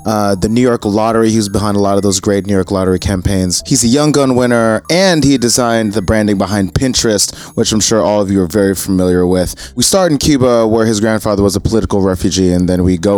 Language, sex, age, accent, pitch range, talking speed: English, male, 20-39, American, 95-115 Hz, 245 wpm